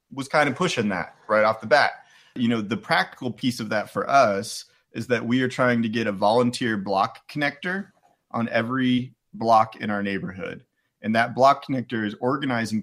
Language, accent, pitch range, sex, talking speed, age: English, American, 105-125 Hz, male, 190 wpm, 30-49